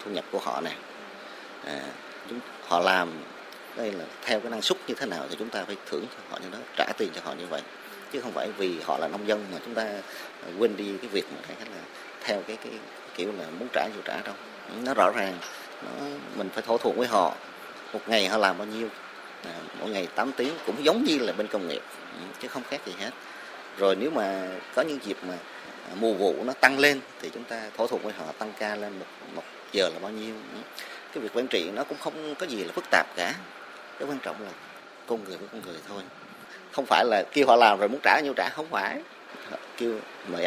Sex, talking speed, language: male, 235 wpm, Vietnamese